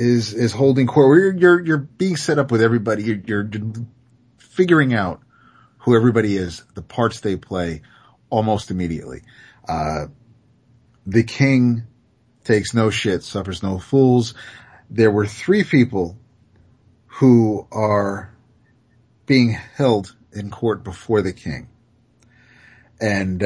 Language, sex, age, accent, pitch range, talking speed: English, male, 40-59, American, 95-125 Hz, 125 wpm